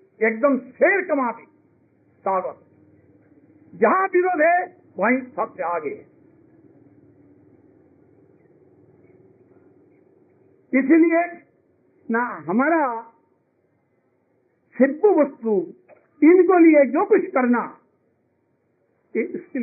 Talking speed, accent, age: 70 wpm, native, 60-79